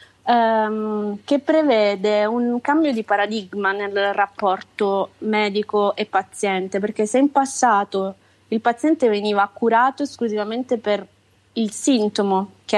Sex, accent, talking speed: female, native, 115 wpm